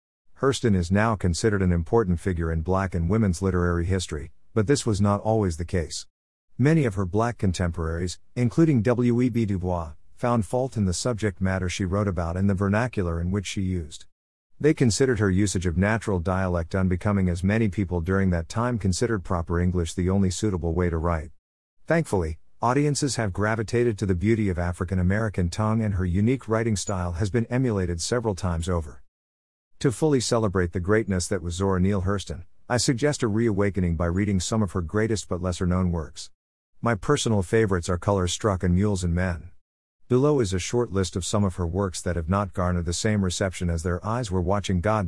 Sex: male